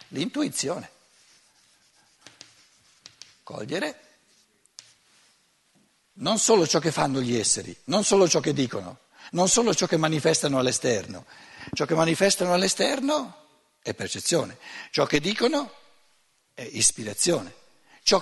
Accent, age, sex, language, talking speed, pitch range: native, 60-79, male, Italian, 105 wpm, 150-215 Hz